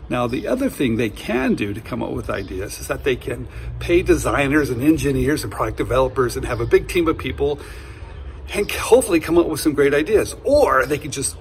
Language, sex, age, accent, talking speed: English, male, 60-79, American, 220 wpm